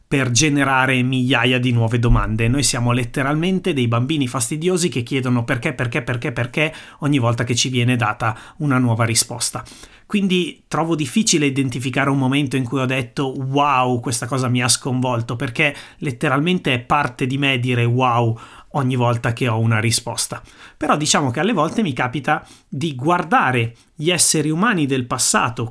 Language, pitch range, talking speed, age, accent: Italian, 120-145 Hz, 165 wpm, 30-49, native